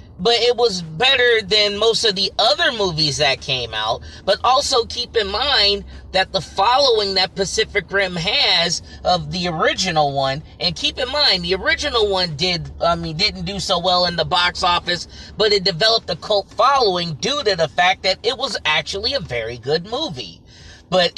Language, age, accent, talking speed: English, 30-49, American, 185 wpm